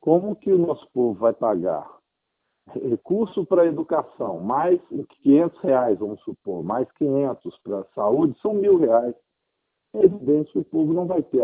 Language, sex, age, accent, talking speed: Portuguese, male, 50-69, Brazilian, 165 wpm